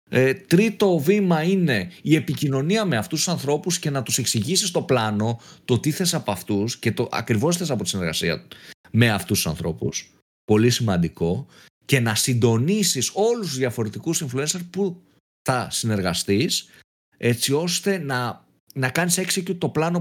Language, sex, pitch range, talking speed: Greek, male, 115-165 Hz, 160 wpm